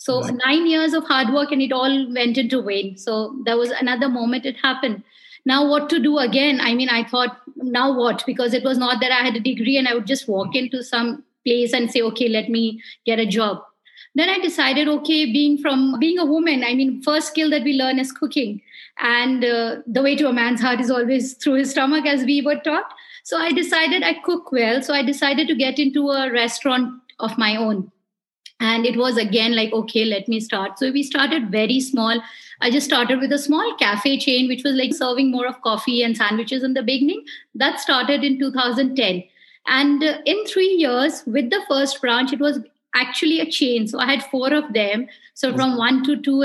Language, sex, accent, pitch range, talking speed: English, female, Indian, 240-280 Hz, 215 wpm